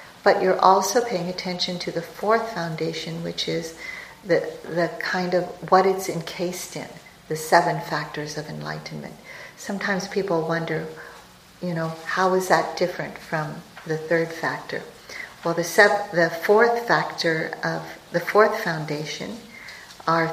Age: 50-69